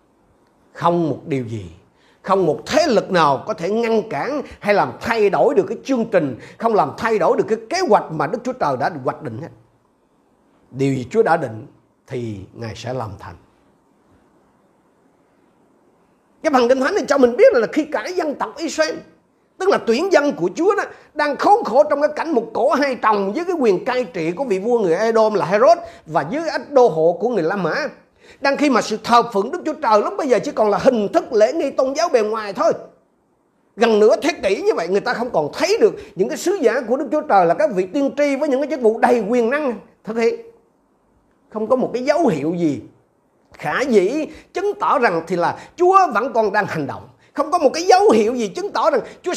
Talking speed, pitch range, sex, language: 230 wpm, 200-310 Hz, male, Vietnamese